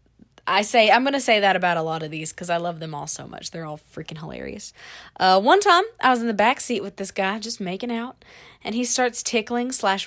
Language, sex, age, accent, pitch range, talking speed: English, female, 20-39, American, 190-275 Hz, 250 wpm